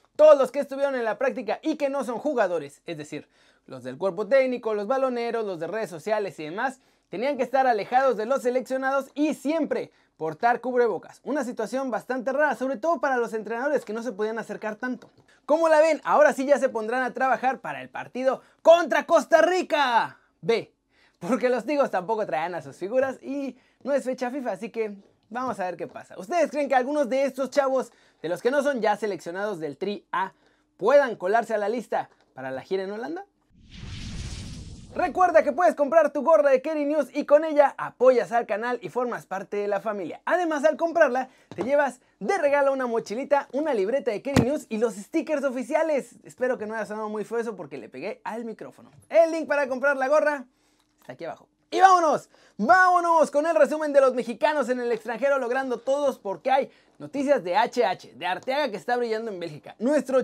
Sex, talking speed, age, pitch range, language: male, 200 wpm, 30-49, 220-290 Hz, Spanish